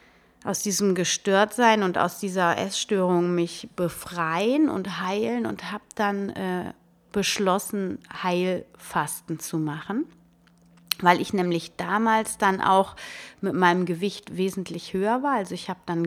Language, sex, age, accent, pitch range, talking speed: German, female, 30-49, German, 165-205 Hz, 130 wpm